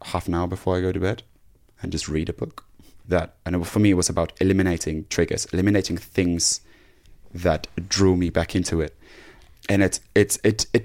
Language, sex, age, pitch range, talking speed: English, male, 20-39, 90-110 Hz, 185 wpm